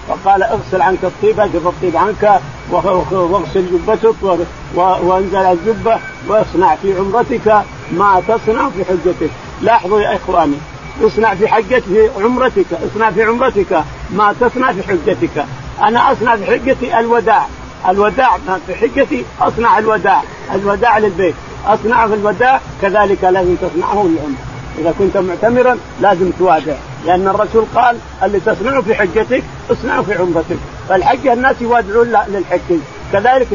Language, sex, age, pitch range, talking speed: Arabic, male, 50-69, 185-240 Hz, 125 wpm